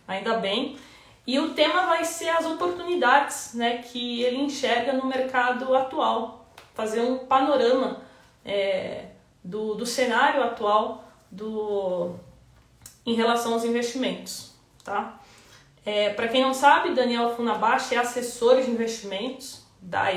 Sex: female